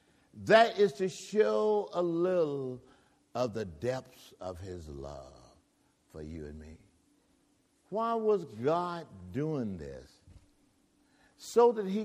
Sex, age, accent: male, 60-79, American